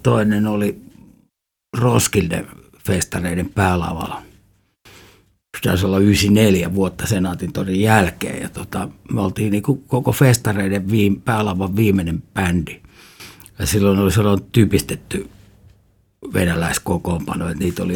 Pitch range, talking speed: 95-110 Hz, 105 wpm